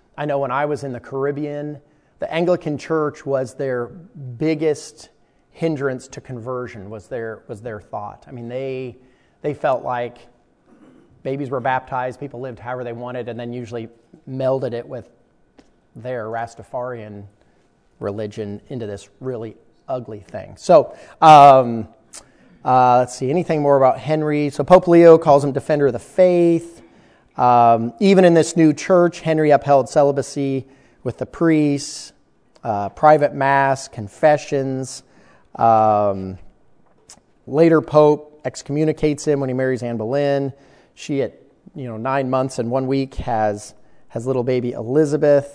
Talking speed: 140 wpm